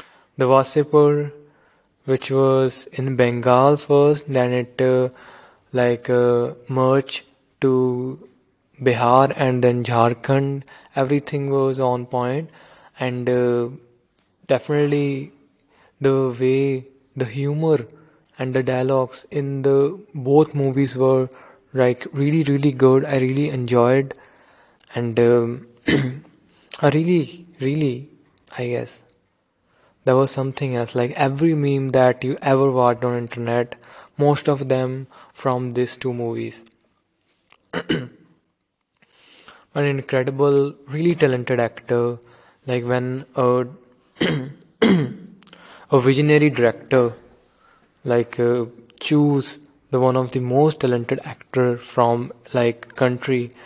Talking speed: 110 wpm